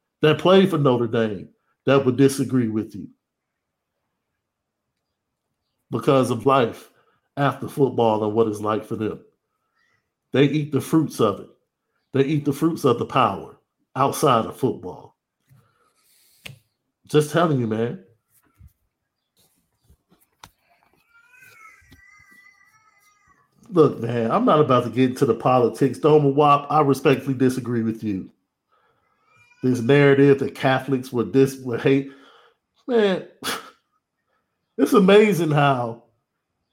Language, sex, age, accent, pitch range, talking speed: English, male, 50-69, American, 120-155 Hz, 115 wpm